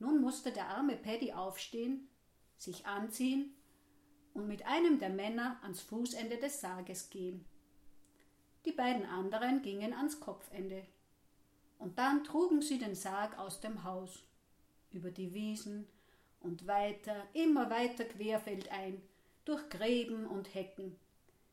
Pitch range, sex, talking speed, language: 185-240 Hz, female, 125 wpm, German